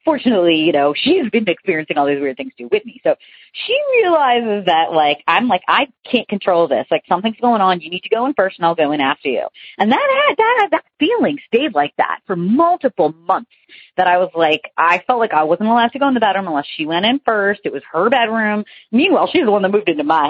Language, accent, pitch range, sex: English, American, 165-265 Hz, female